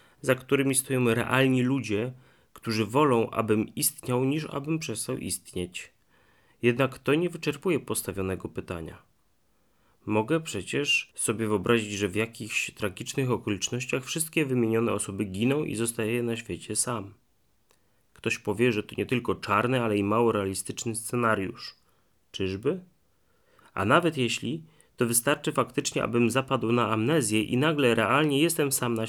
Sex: male